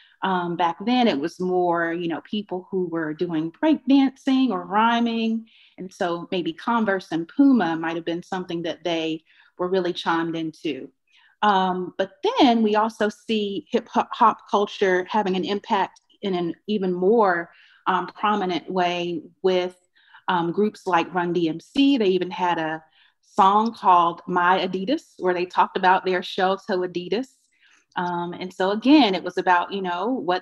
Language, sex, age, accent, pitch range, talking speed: English, female, 30-49, American, 170-210 Hz, 165 wpm